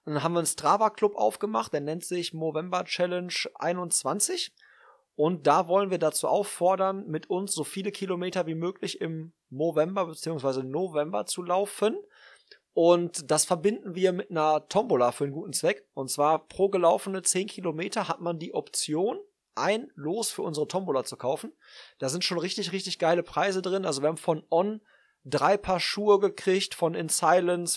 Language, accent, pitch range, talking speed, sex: German, German, 150-190 Hz, 170 wpm, male